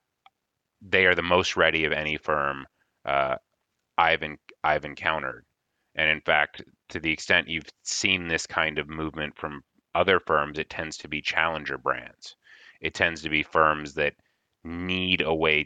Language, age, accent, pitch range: English, 30-49, American, 75-90 Hz